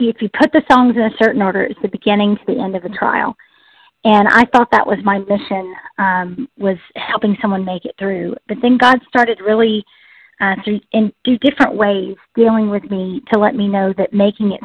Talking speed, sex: 215 wpm, female